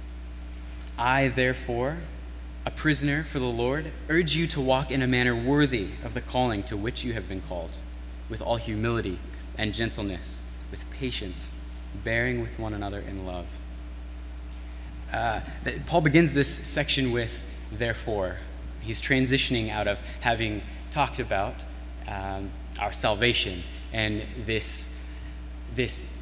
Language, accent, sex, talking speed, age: English, American, male, 130 wpm, 20-39